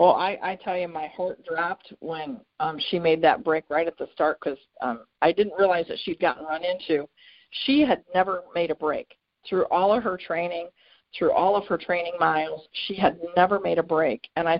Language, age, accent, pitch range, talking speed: English, 40-59, American, 165-235 Hz, 220 wpm